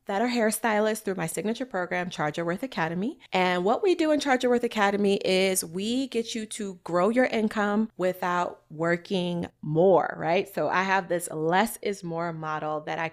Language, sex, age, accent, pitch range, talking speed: English, female, 20-39, American, 165-220 Hz, 185 wpm